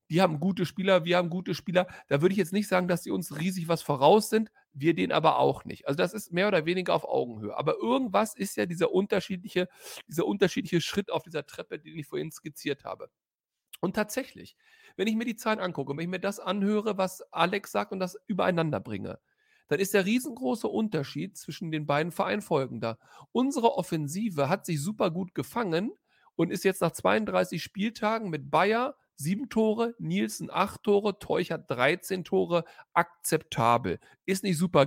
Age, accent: 40-59, German